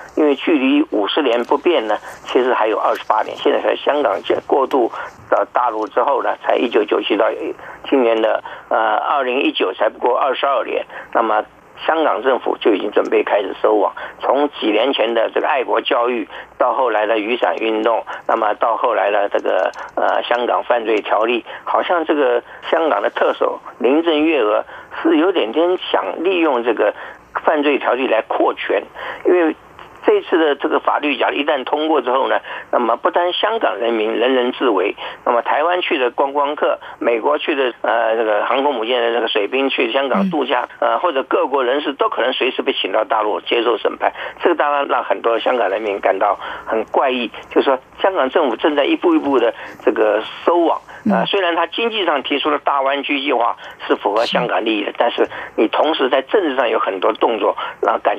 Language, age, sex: Chinese, 50-69, male